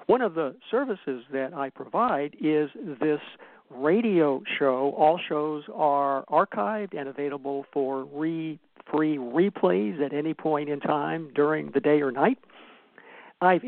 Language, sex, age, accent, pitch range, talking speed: English, male, 60-79, American, 140-165 Hz, 135 wpm